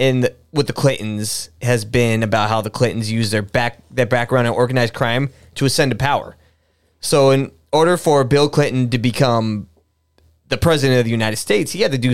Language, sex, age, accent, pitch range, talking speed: English, male, 20-39, American, 105-135 Hz, 200 wpm